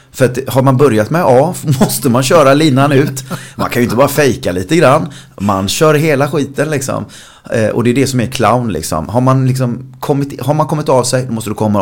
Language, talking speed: Swedish, 245 wpm